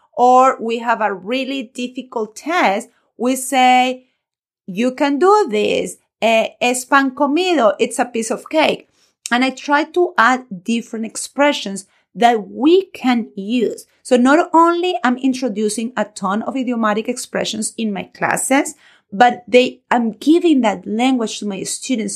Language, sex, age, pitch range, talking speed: English, female, 30-49, 210-260 Hz, 145 wpm